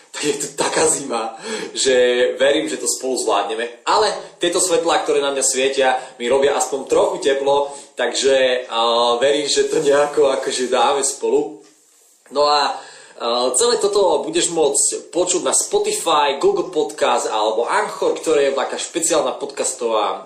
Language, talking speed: Slovak, 150 wpm